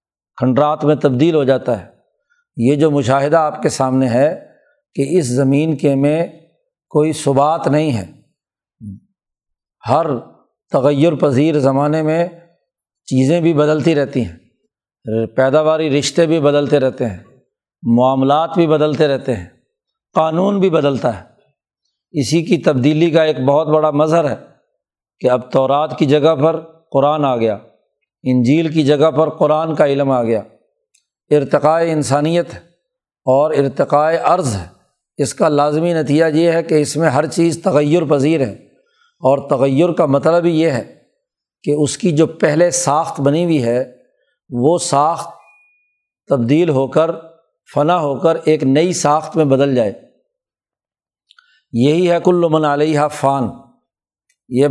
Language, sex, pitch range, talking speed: Urdu, male, 140-165 Hz, 145 wpm